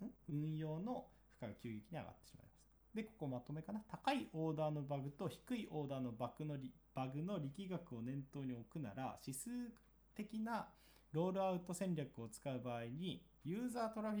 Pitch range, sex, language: 135-190 Hz, male, Japanese